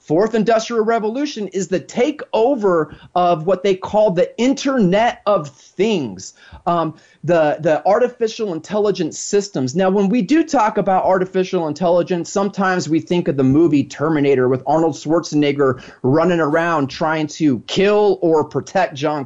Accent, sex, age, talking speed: American, male, 30-49, 145 wpm